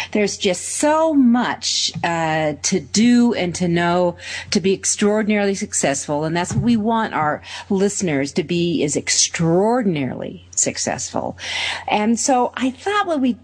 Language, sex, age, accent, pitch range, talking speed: English, female, 40-59, American, 145-205 Hz, 145 wpm